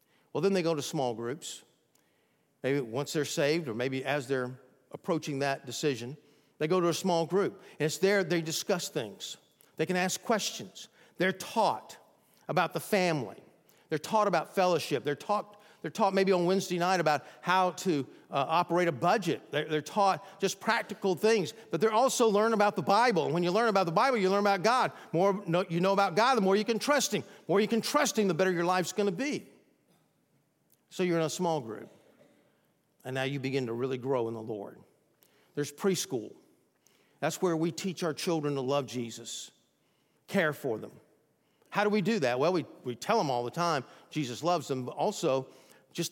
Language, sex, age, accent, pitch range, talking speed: English, male, 50-69, American, 145-195 Hz, 205 wpm